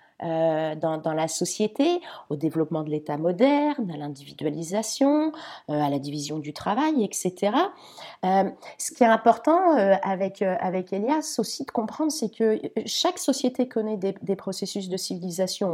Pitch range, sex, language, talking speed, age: 185-255 Hz, female, French, 155 wpm, 30-49